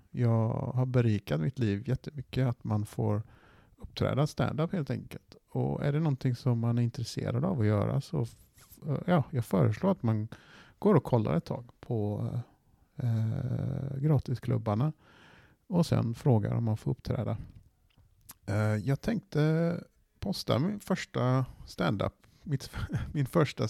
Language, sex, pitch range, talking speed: Swedish, male, 105-135 Hz, 140 wpm